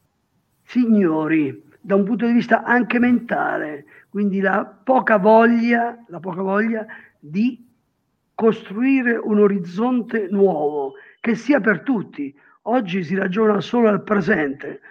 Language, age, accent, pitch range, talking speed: Italian, 50-69, native, 205-255 Hz, 120 wpm